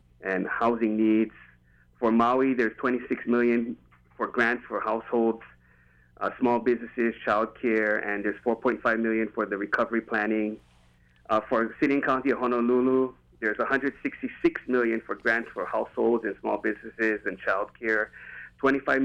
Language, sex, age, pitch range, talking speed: English, male, 30-49, 105-120 Hz, 145 wpm